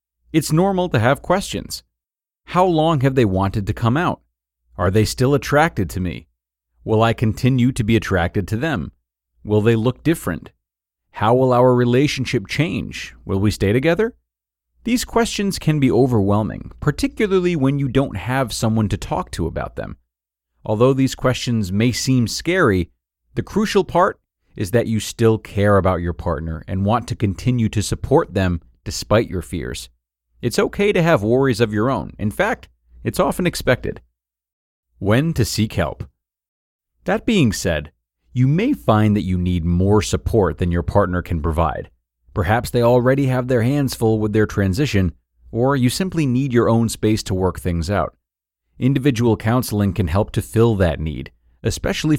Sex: male